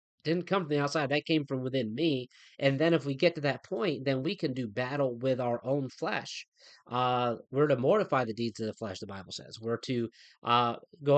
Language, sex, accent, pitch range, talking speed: English, male, American, 125-155 Hz, 230 wpm